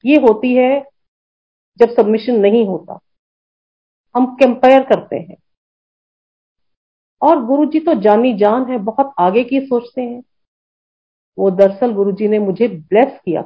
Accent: native